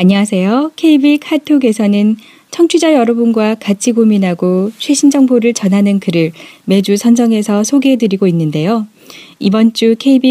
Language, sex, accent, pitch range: Korean, female, native, 185-245 Hz